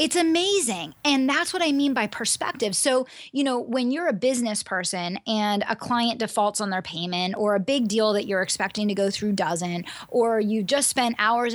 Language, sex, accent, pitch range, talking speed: English, female, American, 205-245 Hz, 210 wpm